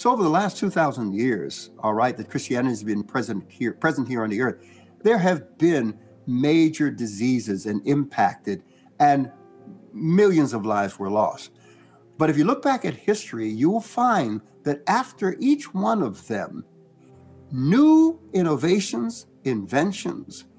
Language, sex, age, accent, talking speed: English, male, 60-79, American, 150 wpm